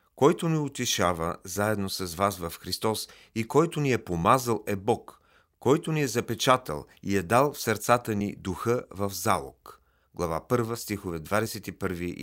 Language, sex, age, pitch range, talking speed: Bulgarian, male, 40-59, 95-130 Hz, 155 wpm